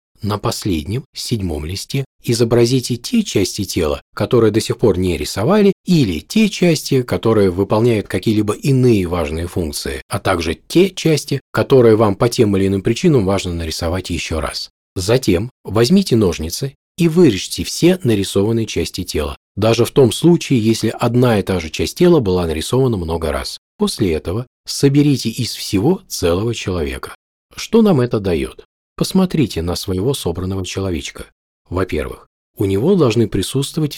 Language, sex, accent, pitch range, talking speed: Russian, male, native, 95-135 Hz, 145 wpm